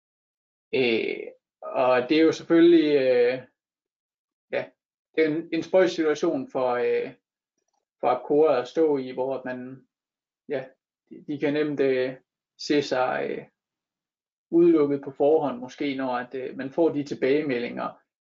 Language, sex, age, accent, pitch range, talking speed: Danish, male, 20-39, native, 130-165 Hz, 140 wpm